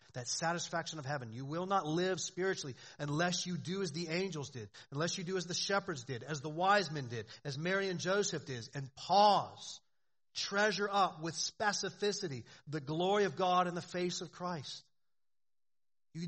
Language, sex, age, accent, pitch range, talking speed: English, male, 40-59, American, 140-185 Hz, 180 wpm